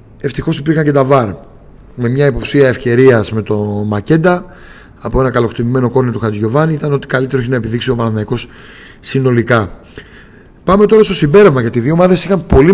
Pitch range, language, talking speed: 115-150 Hz, Greek, 175 wpm